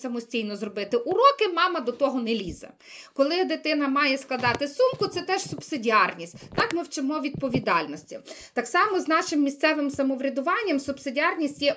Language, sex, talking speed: Ukrainian, female, 145 wpm